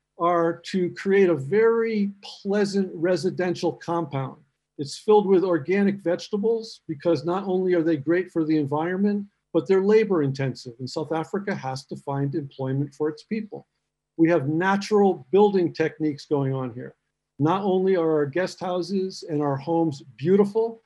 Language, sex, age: English, male, 50-69